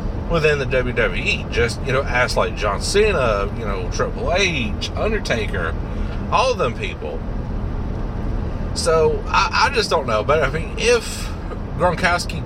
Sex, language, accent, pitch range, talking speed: male, English, American, 100-130 Hz, 145 wpm